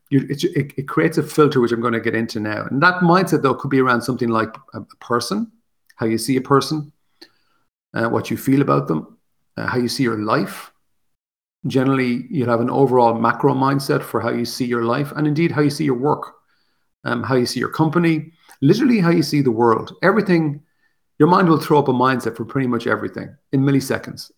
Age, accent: 40-59, Irish